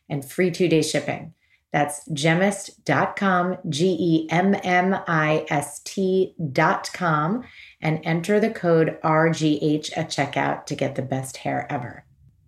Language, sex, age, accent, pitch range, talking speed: English, female, 30-49, American, 150-180 Hz, 95 wpm